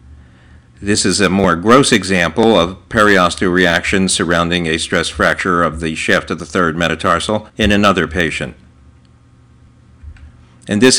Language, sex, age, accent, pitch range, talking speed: English, male, 50-69, American, 90-115 Hz, 135 wpm